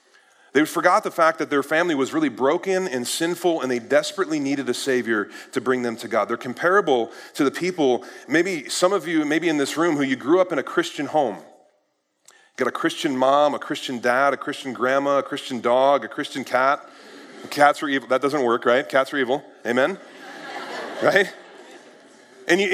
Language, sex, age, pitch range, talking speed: English, male, 30-49, 125-180 Hz, 195 wpm